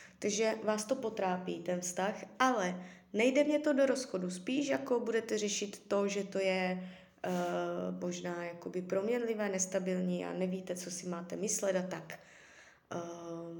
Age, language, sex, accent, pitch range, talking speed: 20-39, Czech, female, native, 185-225 Hz, 150 wpm